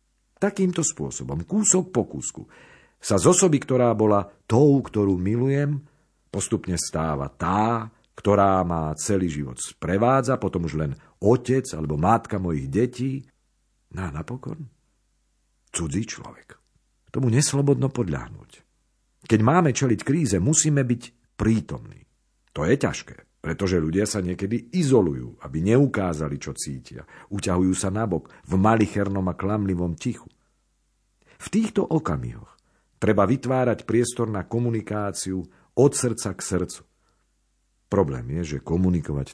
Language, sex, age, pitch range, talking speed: Slovak, male, 50-69, 85-125 Hz, 120 wpm